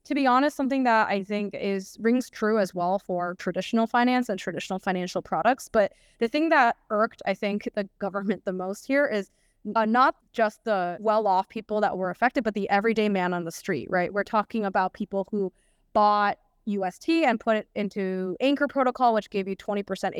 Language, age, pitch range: English, 20-39, 185-240 Hz